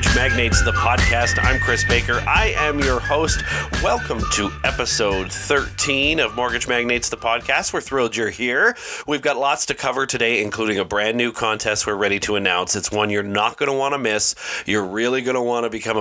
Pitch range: 100-120 Hz